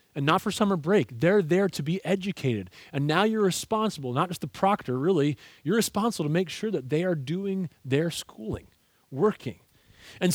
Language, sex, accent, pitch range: English, male, American, 125-180 Hz